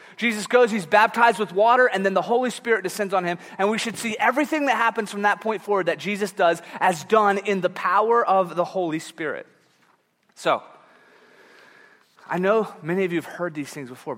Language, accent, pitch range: English, American, 150-205 Hz